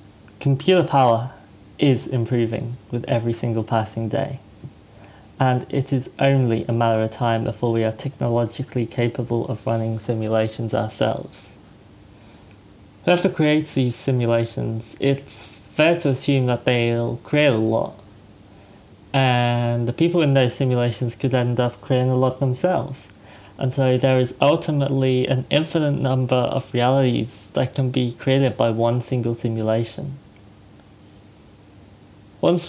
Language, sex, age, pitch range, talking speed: English, male, 20-39, 110-135 Hz, 130 wpm